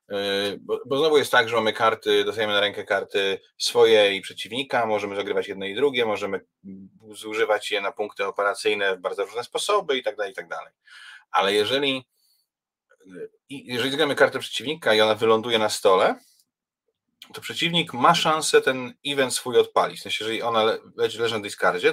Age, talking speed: 30-49, 170 wpm